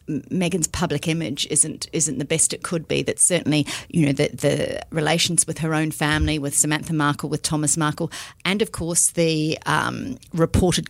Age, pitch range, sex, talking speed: 40-59, 155-190 Hz, female, 180 wpm